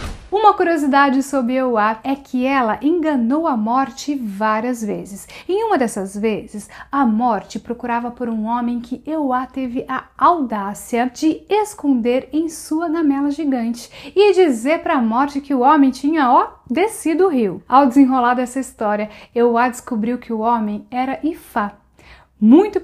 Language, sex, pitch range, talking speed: Portuguese, female, 240-325 Hz, 150 wpm